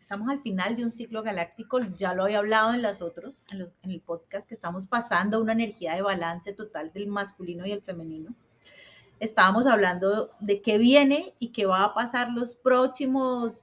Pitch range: 185-245 Hz